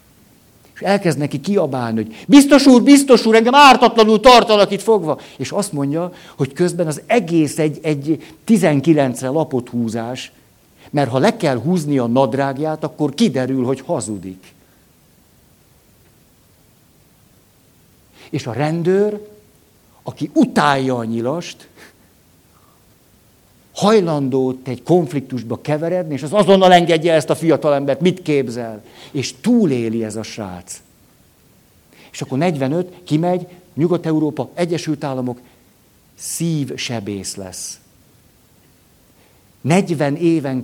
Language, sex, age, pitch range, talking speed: Hungarian, male, 60-79, 130-175 Hz, 105 wpm